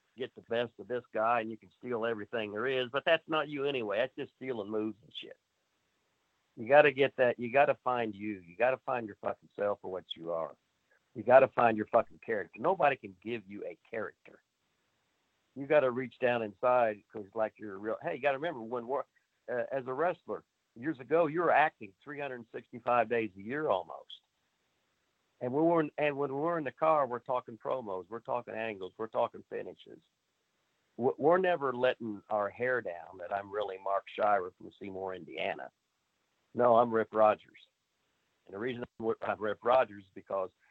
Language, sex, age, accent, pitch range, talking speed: English, male, 60-79, American, 105-130 Hz, 195 wpm